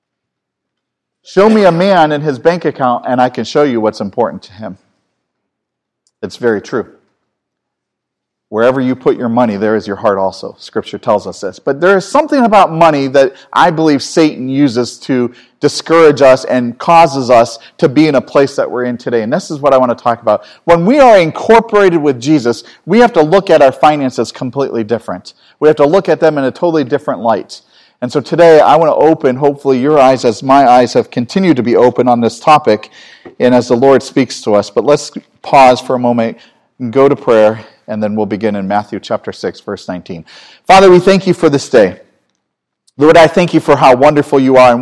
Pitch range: 125-160 Hz